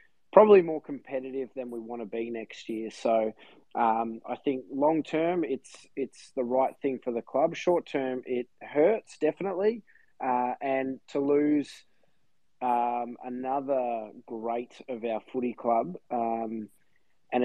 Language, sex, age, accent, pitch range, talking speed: English, male, 20-39, Australian, 115-135 Hz, 140 wpm